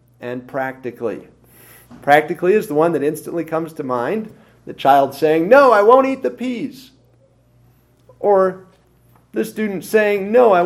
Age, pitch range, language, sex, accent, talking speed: 40-59, 120-170 Hz, English, male, American, 145 wpm